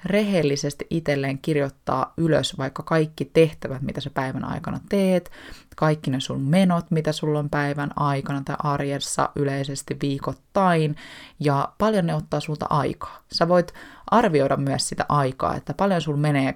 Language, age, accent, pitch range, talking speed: Finnish, 20-39, native, 140-165 Hz, 150 wpm